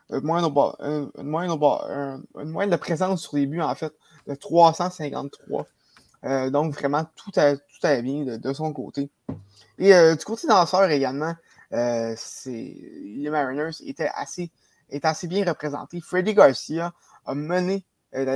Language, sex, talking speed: French, male, 145 wpm